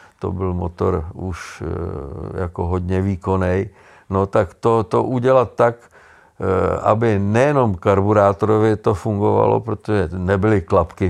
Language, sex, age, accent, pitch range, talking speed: Czech, male, 50-69, native, 95-115 Hz, 115 wpm